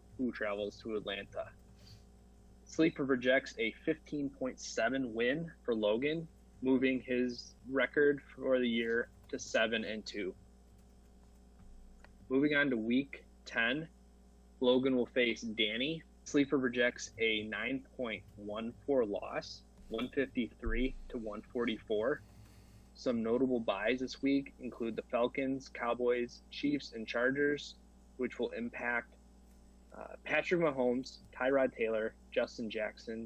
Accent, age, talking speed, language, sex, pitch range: American, 20-39, 110 wpm, English, male, 110-130 Hz